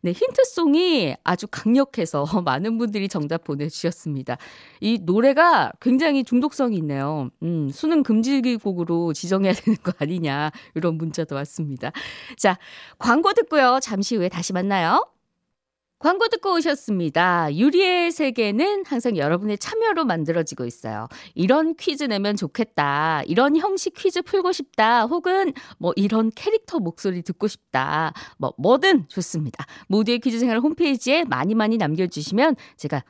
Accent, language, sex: native, Korean, female